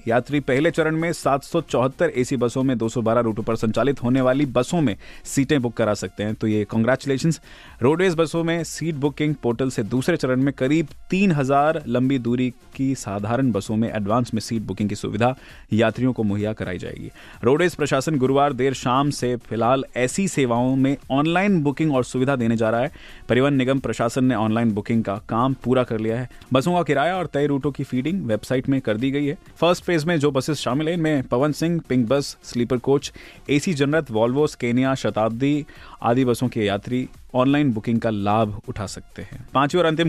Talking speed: 175 wpm